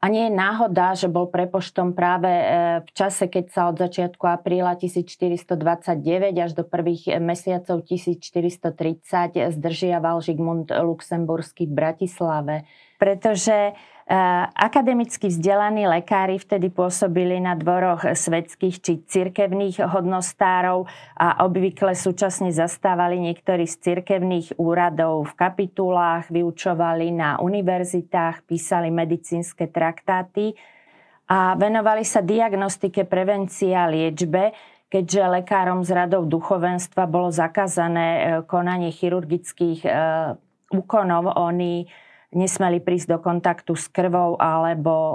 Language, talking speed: Slovak, 105 wpm